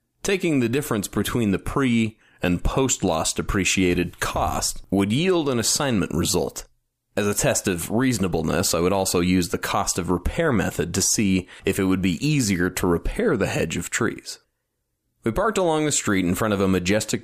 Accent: American